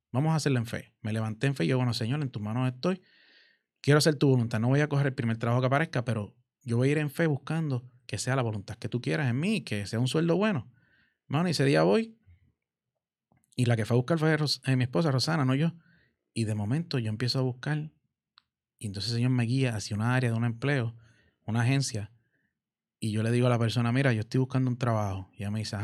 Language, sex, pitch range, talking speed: Spanish, male, 115-145 Hz, 250 wpm